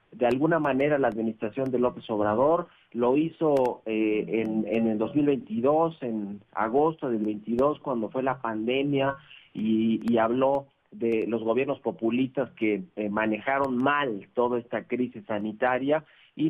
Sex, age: male, 40-59